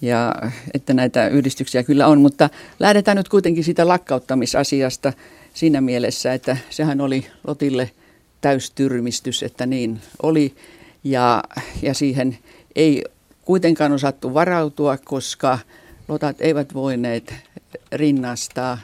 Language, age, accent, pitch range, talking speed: Finnish, 50-69, native, 125-160 Hz, 110 wpm